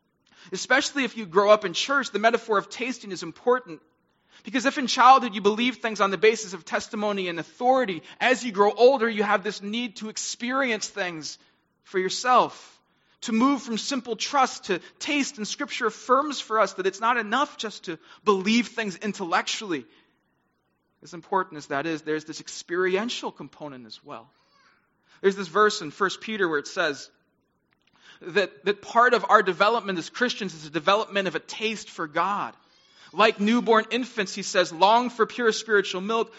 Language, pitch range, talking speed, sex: English, 195-245 Hz, 175 wpm, male